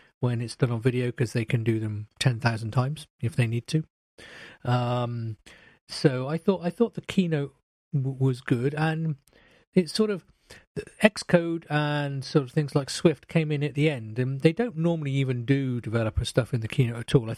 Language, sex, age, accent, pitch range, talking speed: English, male, 40-59, British, 120-150 Hz, 200 wpm